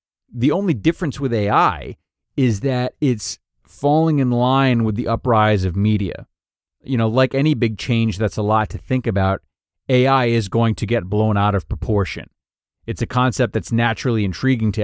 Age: 30-49